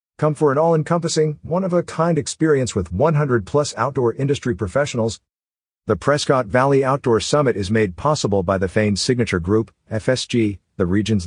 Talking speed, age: 145 wpm, 50-69